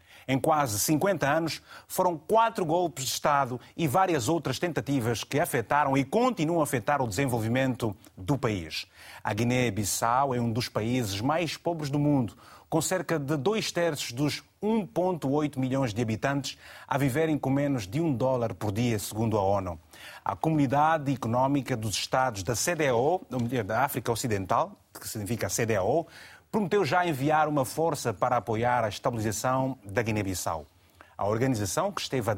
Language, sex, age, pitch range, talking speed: Portuguese, male, 30-49, 115-145 Hz, 155 wpm